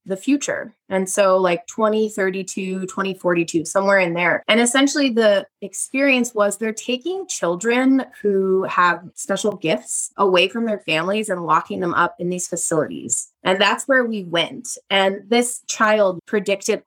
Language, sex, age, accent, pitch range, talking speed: English, female, 20-39, American, 175-230 Hz, 150 wpm